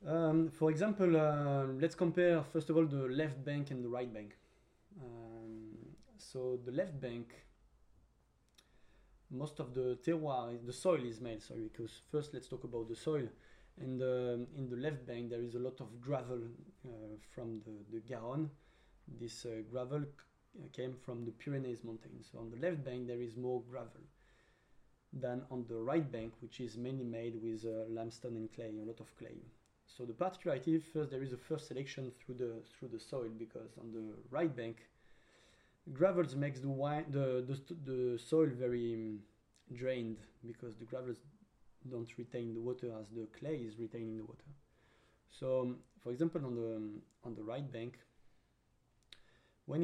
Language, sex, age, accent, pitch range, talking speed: English, male, 20-39, French, 115-145 Hz, 175 wpm